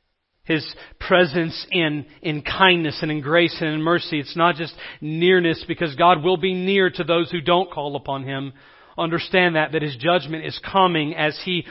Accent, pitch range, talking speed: American, 140-175 Hz, 185 wpm